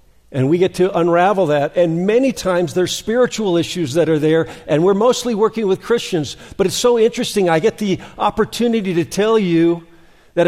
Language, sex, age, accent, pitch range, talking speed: English, male, 50-69, American, 150-200 Hz, 190 wpm